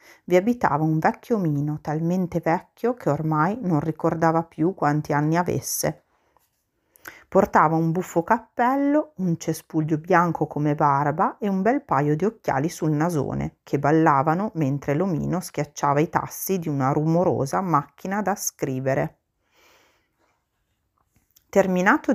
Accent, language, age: native, Italian, 40-59